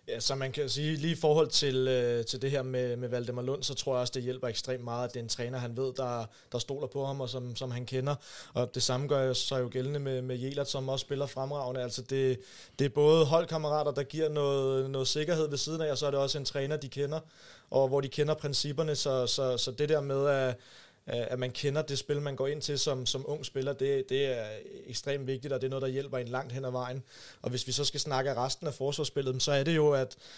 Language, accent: Danish, native